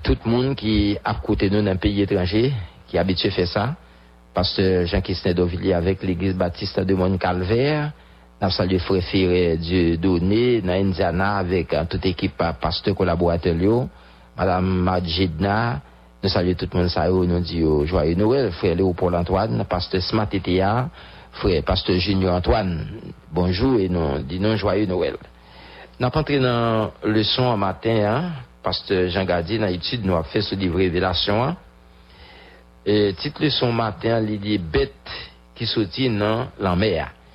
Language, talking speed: English, 150 wpm